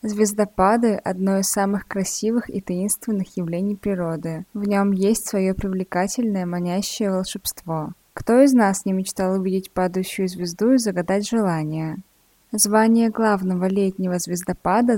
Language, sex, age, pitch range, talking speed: Russian, female, 20-39, 185-225 Hz, 125 wpm